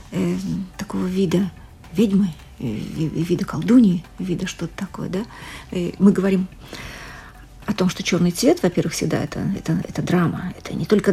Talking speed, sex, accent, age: 155 wpm, female, native, 40-59